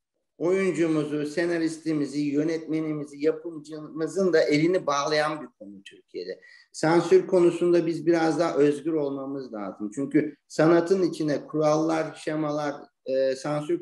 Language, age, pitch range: Turkish, 50-69, 150-195 Hz